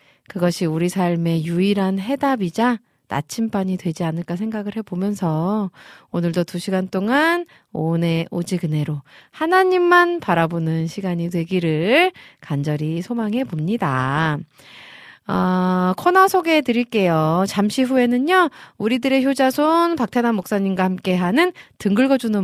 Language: Korean